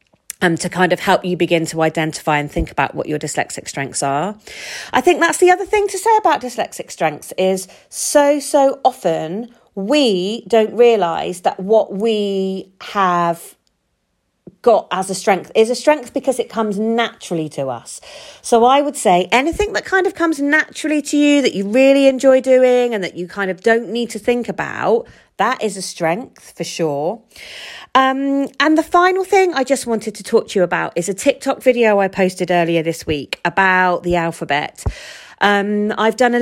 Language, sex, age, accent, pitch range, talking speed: English, female, 40-59, British, 190-260 Hz, 190 wpm